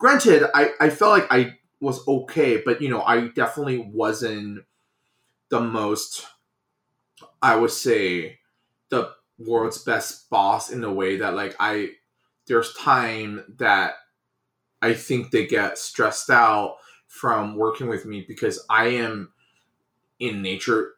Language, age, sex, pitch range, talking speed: English, 20-39, male, 115-145 Hz, 135 wpm